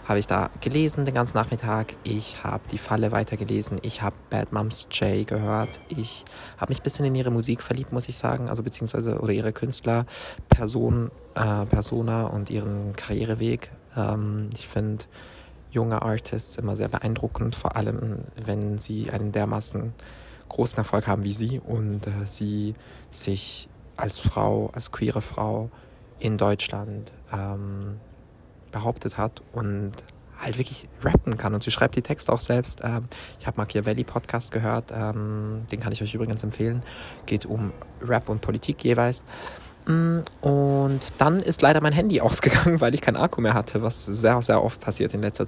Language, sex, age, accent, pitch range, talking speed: German, male, 20-39, German, 105-120 Hz, 160 wpm